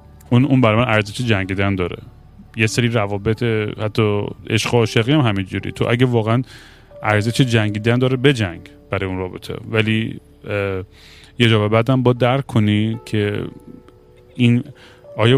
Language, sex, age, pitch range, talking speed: Persian, male, 30-49, 105-125 Hz, 140 wpm